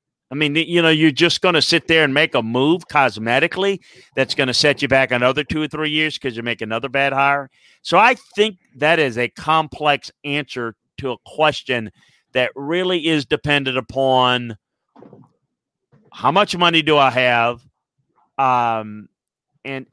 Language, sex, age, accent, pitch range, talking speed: English, male, 40-59, American, 120-155 Hz, 170 wpm